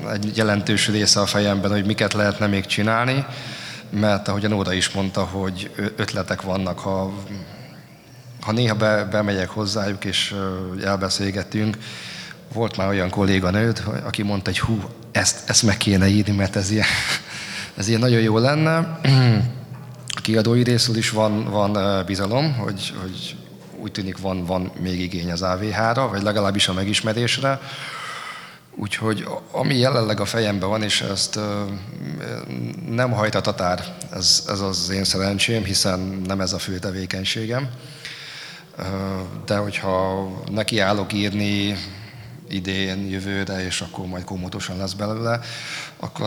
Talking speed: 130 wpm